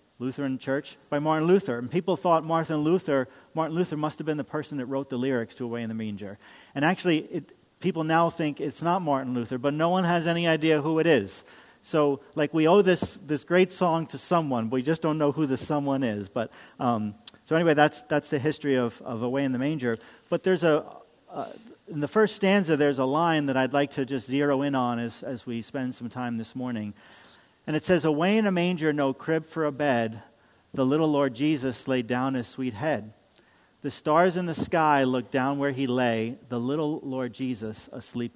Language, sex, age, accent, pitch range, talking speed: English, male, 40-59, American, 125-160 Hz, 220 wpm